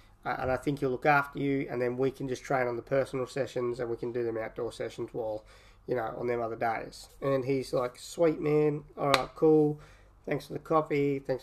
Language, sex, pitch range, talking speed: English, male, 120-145 Hz, 225 wpm